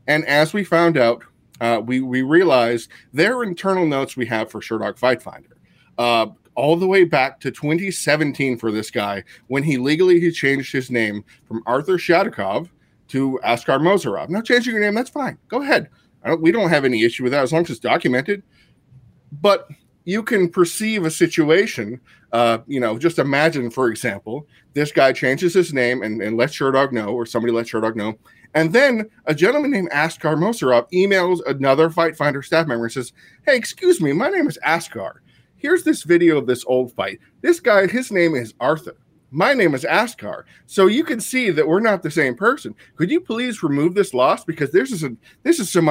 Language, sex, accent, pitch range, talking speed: English, male, American, 125-180 Hz, 200 wpm